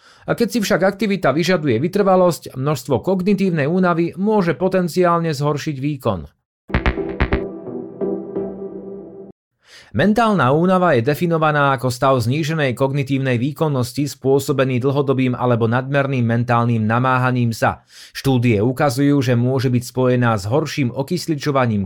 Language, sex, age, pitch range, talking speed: Slovak, male, 30-49, 125-155 Hz, 105 wpm